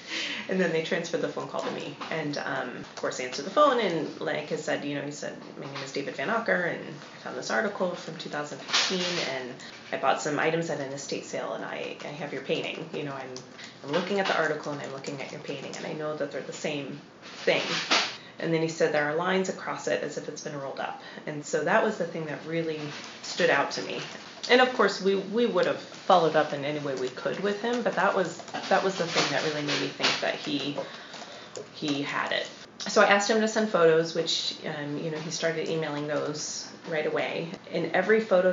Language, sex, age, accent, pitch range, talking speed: English, female, 30-49, American, 150-185 Hz, 240 wpm